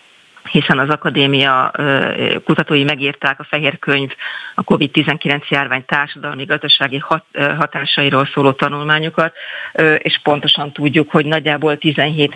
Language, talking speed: Hungarian, 100 wpm